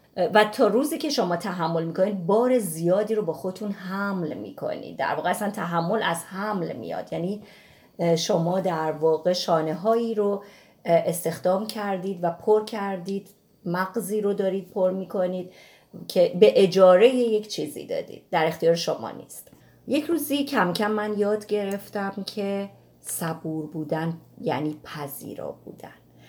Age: 30-49